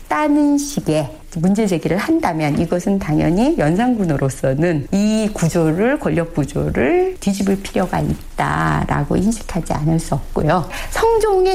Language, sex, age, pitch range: Korean, female, 40-59, 155-245 Hz